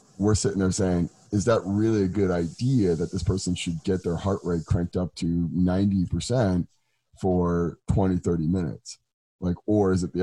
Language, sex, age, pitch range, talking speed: English, male, 30-49, 85-105 Hz, 180 wpm